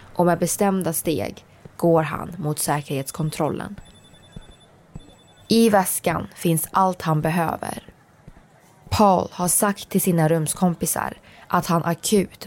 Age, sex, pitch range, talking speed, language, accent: 20-39, female, 160-180 Hz, 110 wpm, Swedish, native